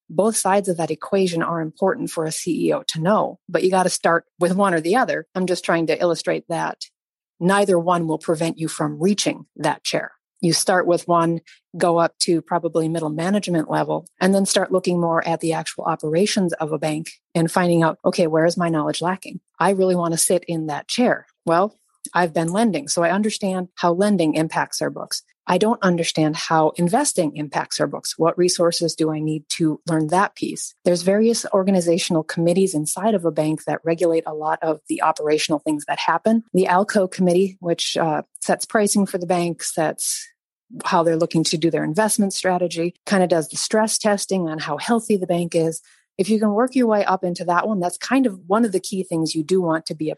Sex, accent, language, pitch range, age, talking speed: female, American, English, 160-190 Hz, 40-59, 215 wpm